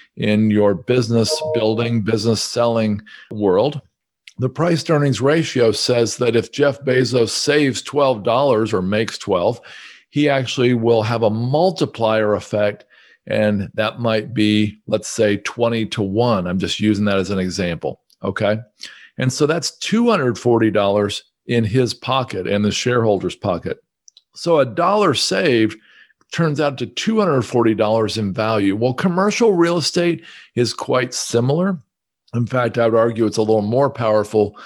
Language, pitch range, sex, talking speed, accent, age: English, 105-135 Hz, male, 145 wpm, American, 50-69